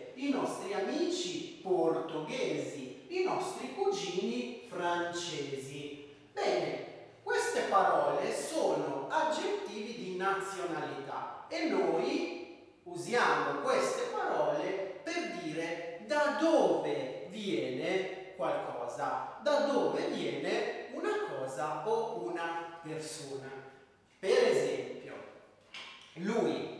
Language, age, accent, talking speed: Italian, 40-59, native, 85 wpm